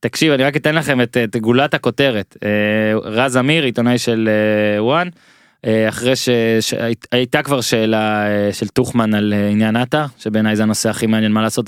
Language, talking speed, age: Hebrew, 160 wpm, 20-39